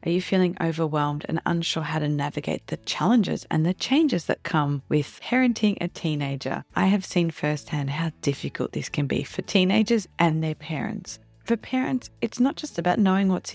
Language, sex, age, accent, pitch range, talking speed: English, female, 30-49, Australian, 150-185 Hz, 185 wpm